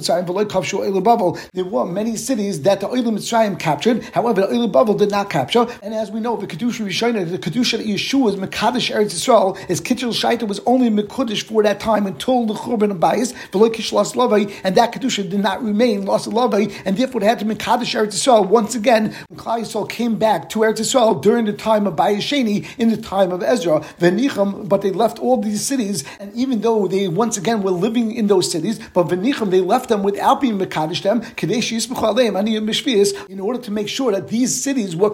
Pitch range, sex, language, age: 200-235 Hz, male, English, 50-69